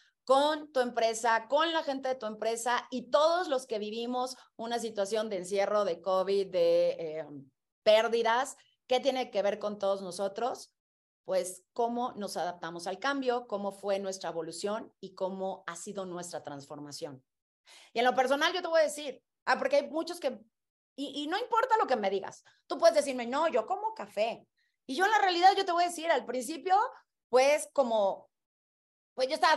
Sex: female